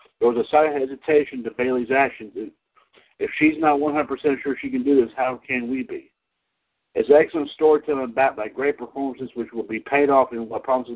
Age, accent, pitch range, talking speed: 60-79, American, 125-145 Hz, 195 wpm